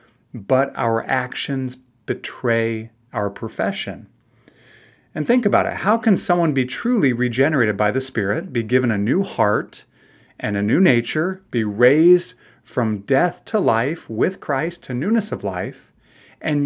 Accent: American